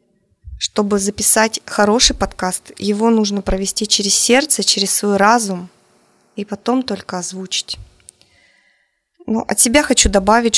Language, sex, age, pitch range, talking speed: Russian, female, 20-39, 190-225 Hz, 120 wpm